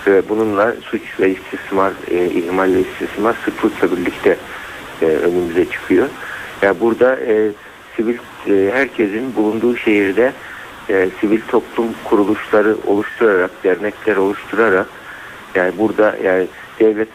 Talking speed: 110 wpm